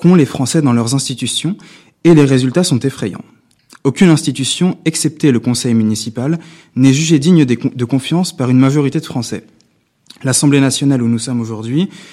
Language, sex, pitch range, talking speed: French, male, 130-170 Hz, 160 wpm